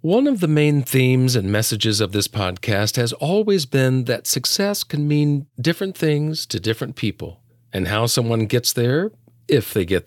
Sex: male